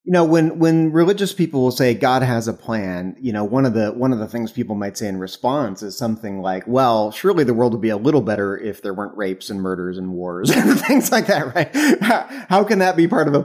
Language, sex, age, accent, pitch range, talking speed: English, male, 30-49, American, 100-145 Hz, 260 wpm